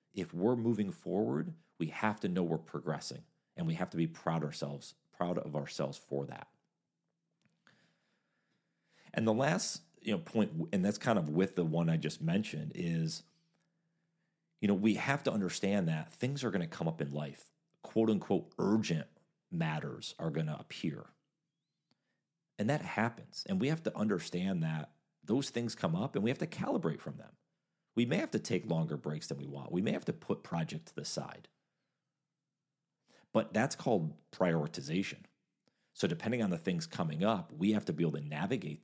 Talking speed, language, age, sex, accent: 185 wpm, English, 40-59, male, American